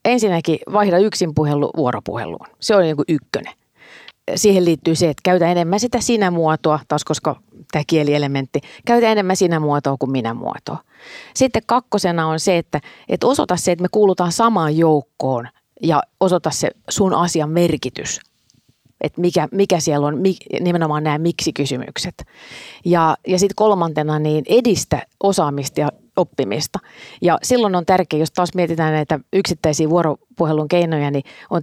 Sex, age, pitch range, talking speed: female, 30-49, 150-195 Hz, 140 wpm